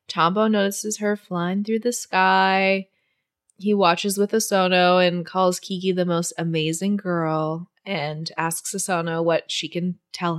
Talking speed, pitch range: 145 wpm, 160-205 Hz